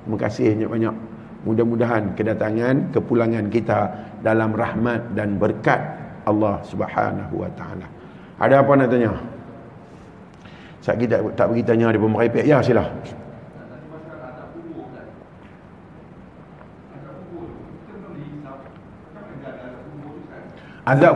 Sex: male